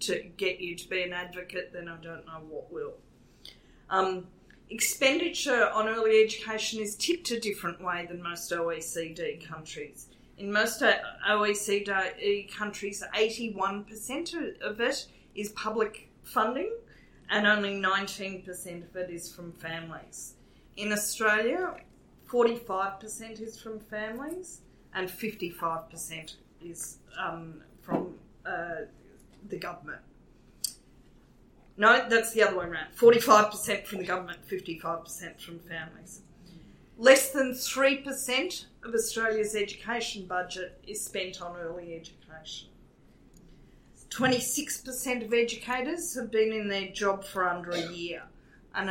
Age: 40-59